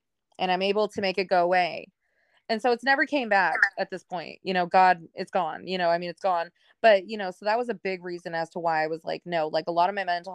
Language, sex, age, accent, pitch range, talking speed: English, female, 20-39, American, 170-200 Hz, 290 wpm